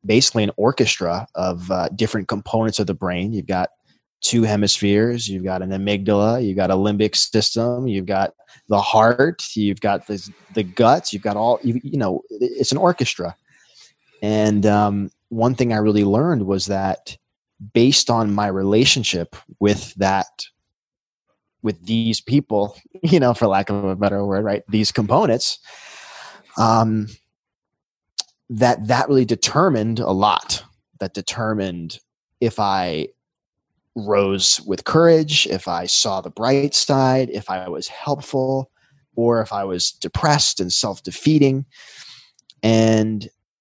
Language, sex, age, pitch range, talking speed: English, male, 20-39, 100-125 Hz, 140 wpm